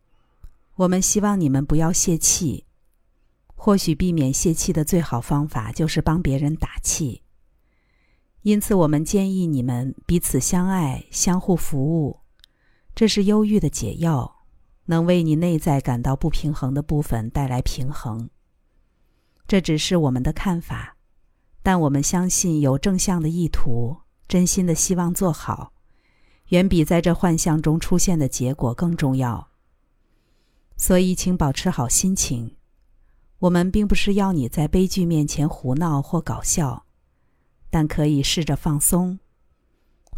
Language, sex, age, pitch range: Chinese, female, 50-69, 125-180 Hz